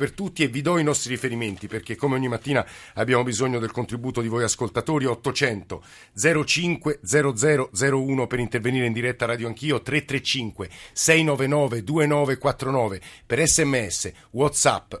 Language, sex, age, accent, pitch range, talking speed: Italian, male, 50-69, native, 110-135 Hz, 135 wpm